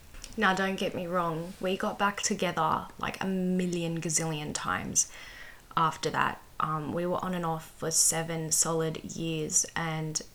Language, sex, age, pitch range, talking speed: English, female, 10-29, 160-185 Hz, 155 wpm